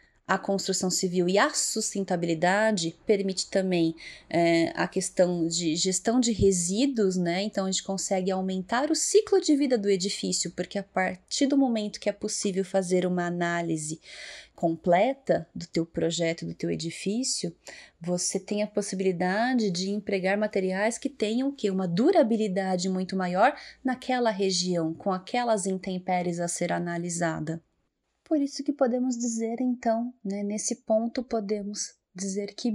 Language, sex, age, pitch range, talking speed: Portuguese, female, 20-39, 185-240 Hz, 145 wpm